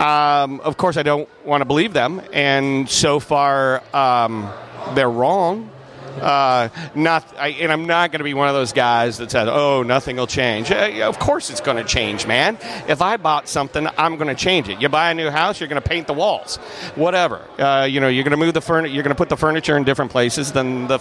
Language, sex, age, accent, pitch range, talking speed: English, male, 40-59, American, 130-155 Hz, 235 wpm